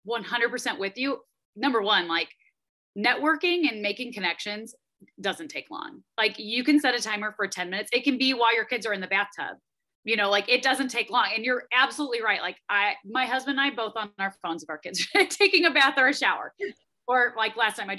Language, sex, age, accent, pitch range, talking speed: English, female, 30-49, American, 205-290 Hz, 220 wpm